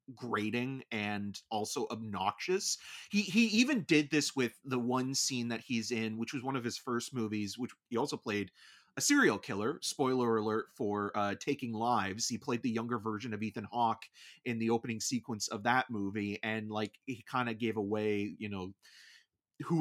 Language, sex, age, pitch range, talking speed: English, male, 30-49, 110-140 Hz, 185 wpm